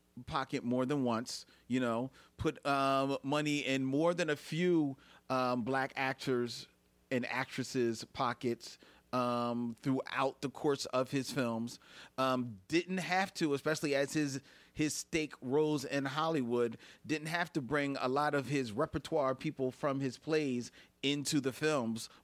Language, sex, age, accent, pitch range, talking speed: English, male, 40-59, American, 110-145 Hz, 150 wpm